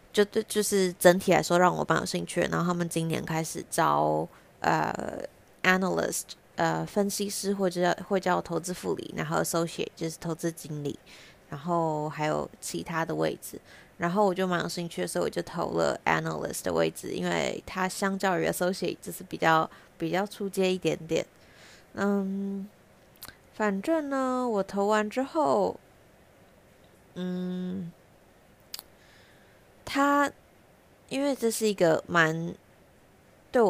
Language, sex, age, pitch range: Chinese, female, 20-39, 165-200 Hz